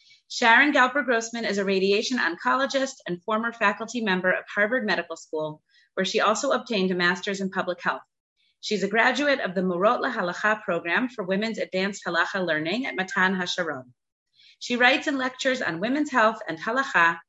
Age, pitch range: 30-49, 185-255 Hz